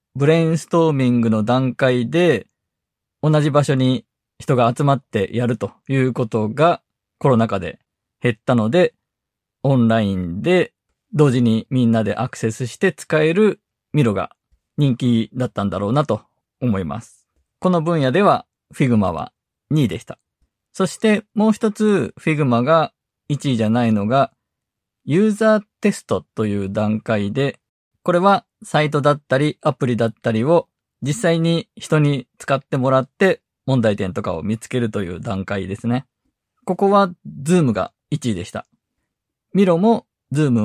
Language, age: Japanese, 20-39